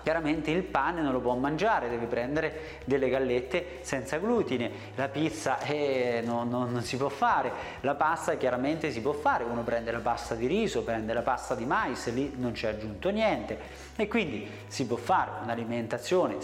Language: Italian